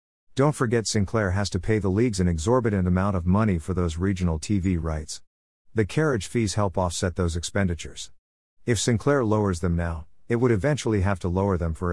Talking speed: 190 wpm